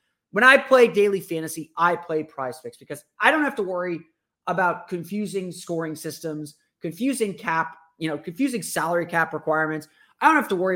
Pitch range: 155-215 Hz